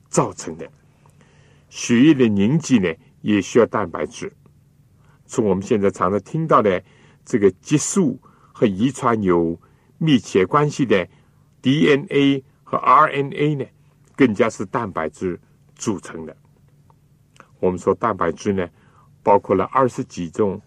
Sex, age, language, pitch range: male, 60-79, Chinese, 110-145 Hz